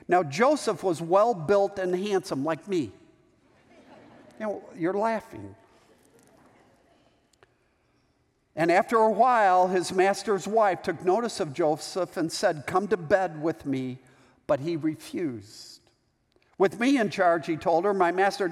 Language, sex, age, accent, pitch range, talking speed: English, male, 50-69, American, 180-235 Hz, 130 wpm